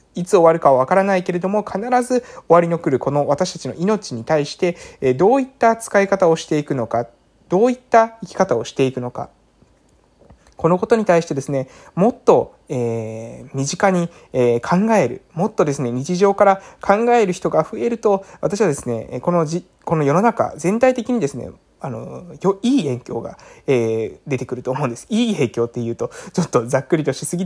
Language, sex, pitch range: Japanese, male, 130-215 Hz